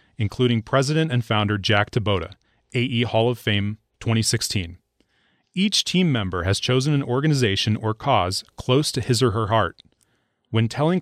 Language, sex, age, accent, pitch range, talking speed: English, male, 30-49, American, 95-130 Hz, 150 wpm